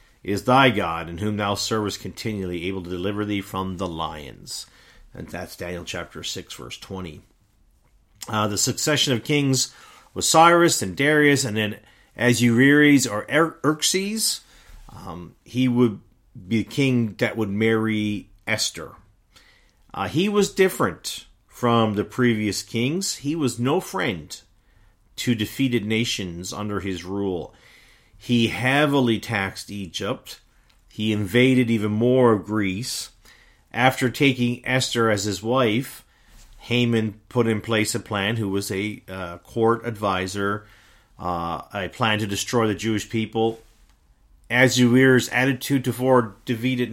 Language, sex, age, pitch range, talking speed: English, male, 40-59, 100-125 Hz, 135 wpm